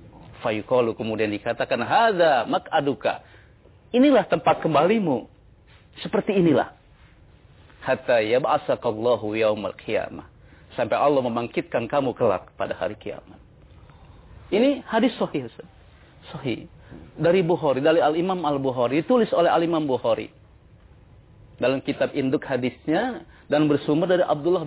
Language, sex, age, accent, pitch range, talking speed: English, male, 40-59, Indonesian, 110-185 Hz, 90 wpm